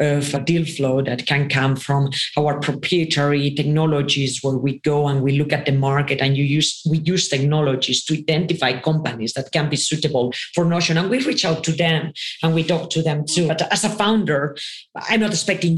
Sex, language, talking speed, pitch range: female, English, 205 wpm, 145-165 Hz